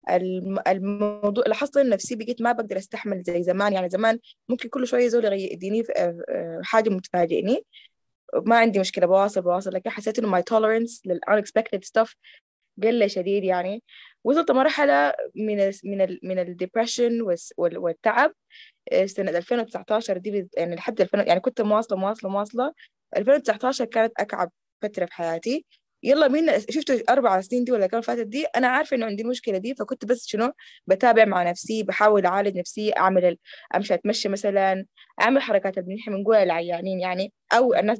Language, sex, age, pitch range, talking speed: Arabic, female, 20-39, 190-245 Hz, 150 wpm